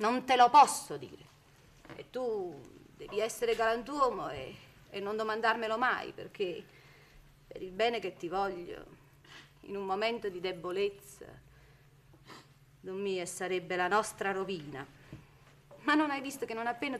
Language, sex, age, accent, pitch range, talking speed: Italian, female, 40-59, native, 160-250 Hz, 140 wpm